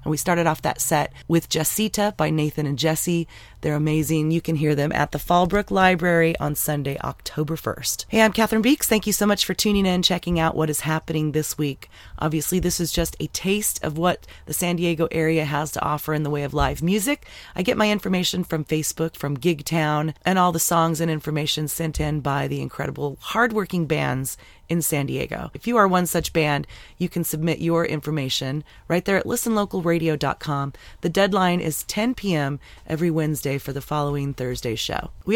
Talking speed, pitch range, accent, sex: 200 wpm, 145-180 Hz, American, female